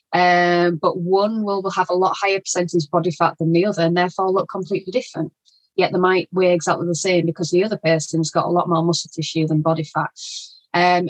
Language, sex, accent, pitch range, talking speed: English, female, British, 170-205 Hz, 215 wpm